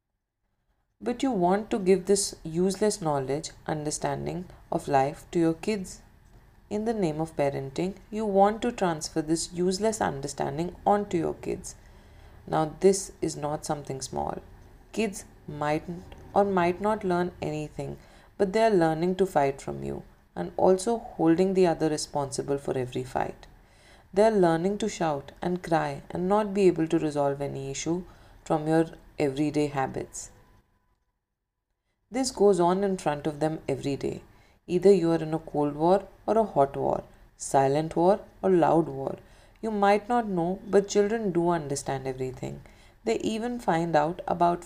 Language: Hindi